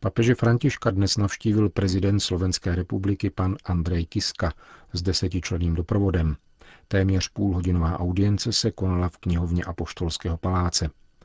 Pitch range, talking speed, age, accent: 85-95 Hz, 115 wpm, 40-59, native